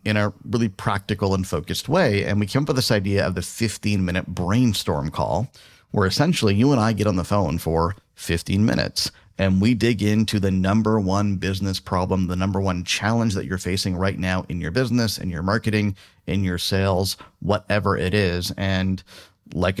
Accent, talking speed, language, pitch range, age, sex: American, 195 wpm, English, 95-105 Hz, 30-49, male